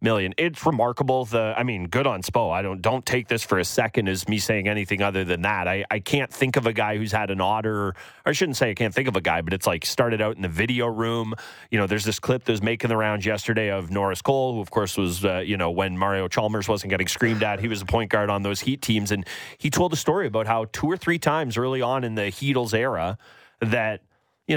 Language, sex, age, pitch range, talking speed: English, male, 30-49, 100-125 Hz, 265 wpm